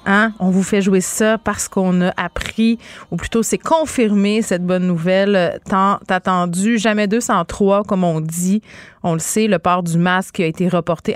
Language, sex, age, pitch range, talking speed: French, female, 30-49, 170-210 Hz, 190 wpm